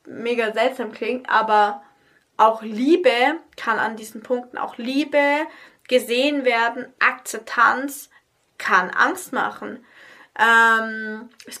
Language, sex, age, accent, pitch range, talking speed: English, female, 20-39, German, 215-260 Hz, 105 wpm